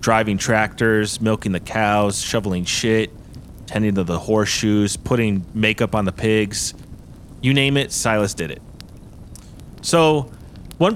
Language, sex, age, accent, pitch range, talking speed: English, male, 30-49, American, 95-115 Hz, 130 wpm